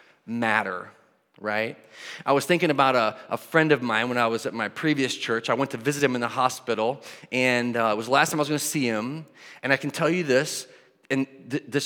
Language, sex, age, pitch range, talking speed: English, male, 30-49, 120-155 Hz, 240 wpm